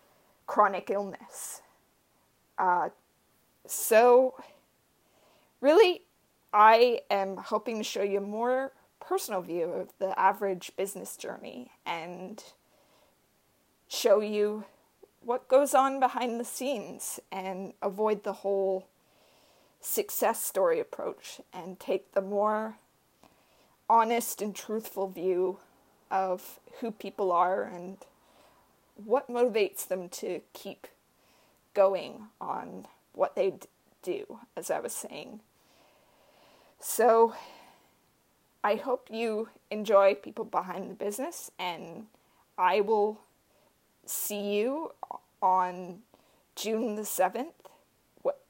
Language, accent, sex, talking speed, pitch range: English, American, female, 100 wpm, 190-240 Hz